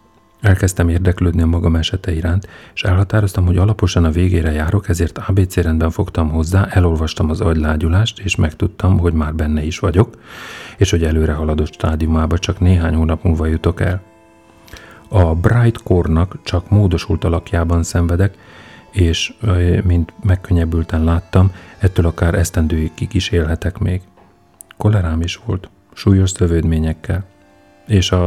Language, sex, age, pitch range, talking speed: Hungarian, male, 40-59, 85-100 Hz, 135 wpm